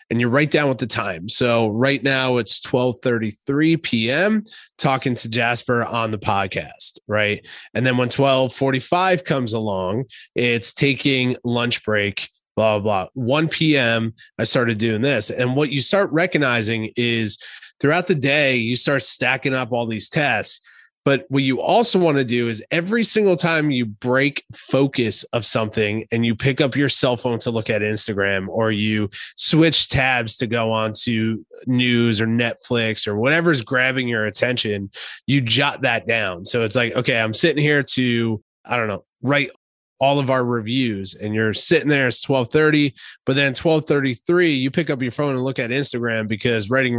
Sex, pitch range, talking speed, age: male, 110-140 Hz, 180 wpm, 20-39